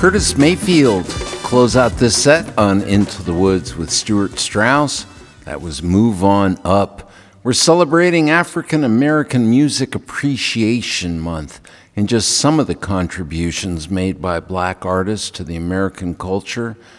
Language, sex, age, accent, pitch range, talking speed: English, male, 60-79, American, 90-125 Hz, 140 wpm